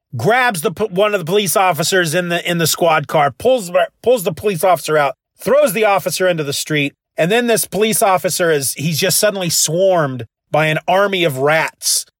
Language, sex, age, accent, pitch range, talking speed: English, male, 40-59, American, 140-205 Hz, 195 wpm